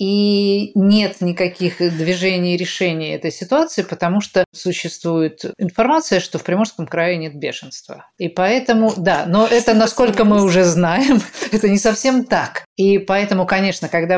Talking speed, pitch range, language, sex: 150 wpm, 165-205 Hz, Russian, female